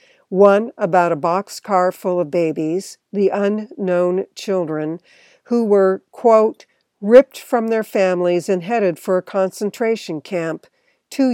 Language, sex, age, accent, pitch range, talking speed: English, female, 60-79, American, 175-220 Hz, 125 wpm